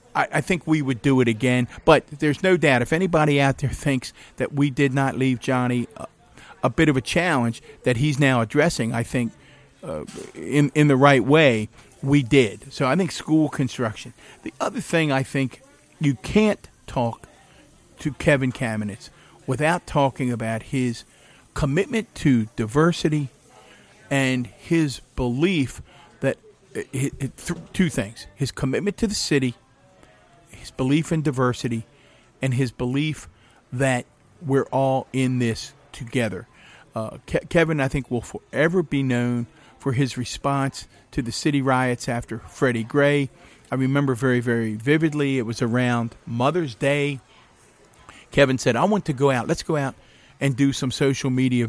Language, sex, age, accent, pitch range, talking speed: English, male, 50-69, American, 125-150 Hz, 155 wpm